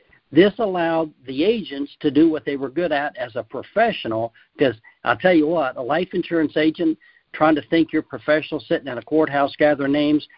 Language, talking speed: English, 200 wpm